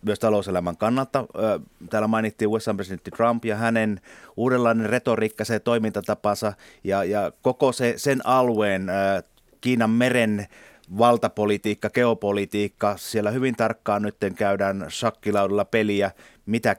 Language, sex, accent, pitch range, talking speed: Finnish, male, native, 100-115 Hz, 115 wpm